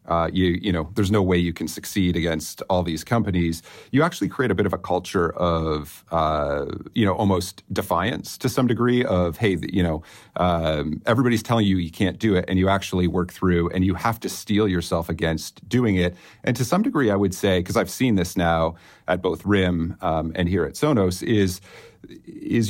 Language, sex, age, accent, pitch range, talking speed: English, male, 40-59, American, 85-105 Hz, 220 wpm